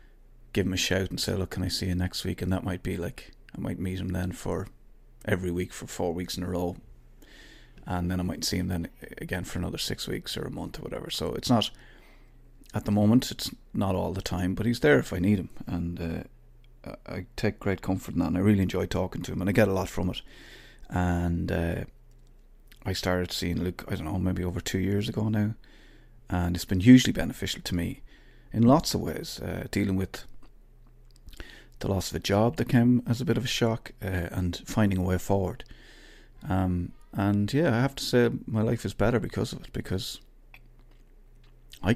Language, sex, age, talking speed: English, male, 30-49, 220 wpm